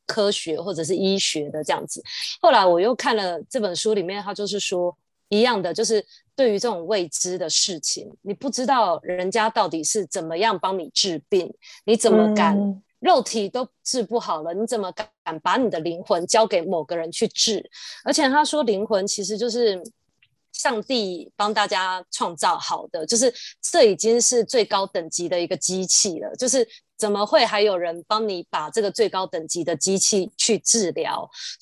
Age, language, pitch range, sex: 20-39, Chinese, 180-225 Hz, female